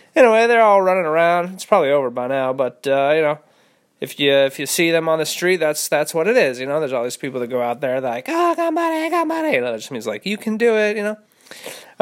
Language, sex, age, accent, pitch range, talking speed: English, male, 20-39, American, 135-170 Hz, 285 wpm